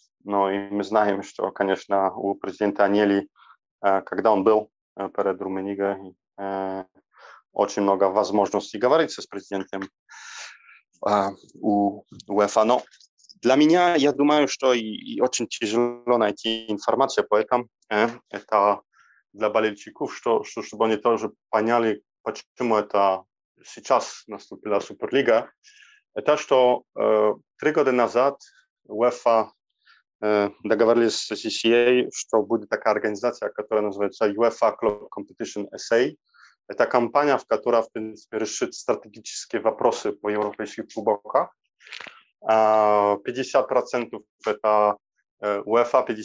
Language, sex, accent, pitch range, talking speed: Russian, male, Polish, 100-120 Hz, 110 wpm